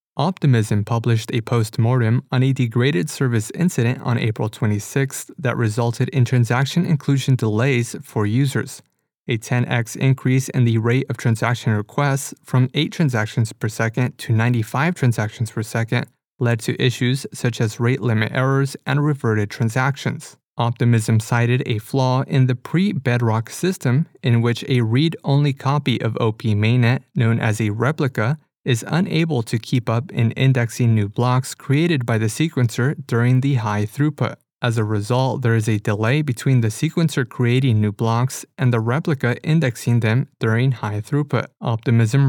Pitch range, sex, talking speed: 115-135 Hz, male, 155 wpm